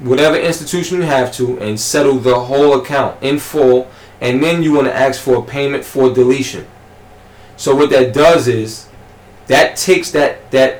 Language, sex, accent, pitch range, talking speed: English, male, American, 125-160 Hz, 180 wpm